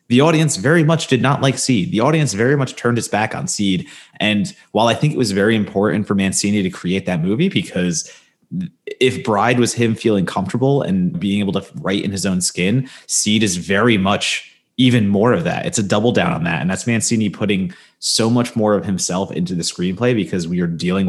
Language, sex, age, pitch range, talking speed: English, male, 30-49, 100-135 Hz, 220 wpm